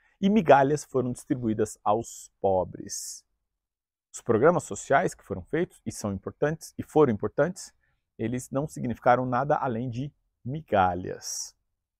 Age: 50-69